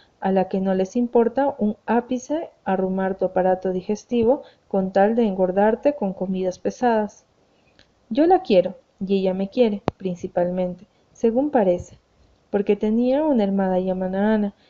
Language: Spanish